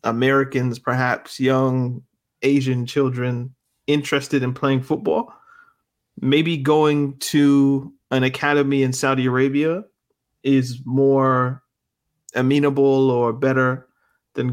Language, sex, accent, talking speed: English, male, American, 95 wpm